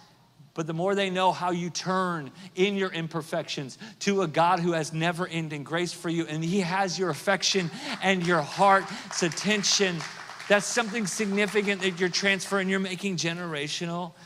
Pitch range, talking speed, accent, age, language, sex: 145-180 Hz, 160 wpm, American, 40-59, English, male